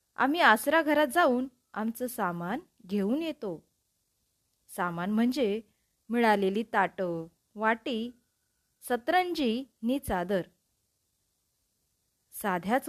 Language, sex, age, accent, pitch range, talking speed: Marathi, female, 20-39, native, 195-265 Hz, 80 wpm